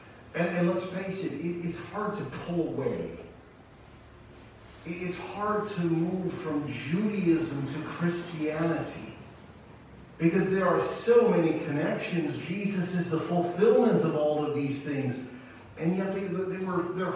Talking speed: 130 wpm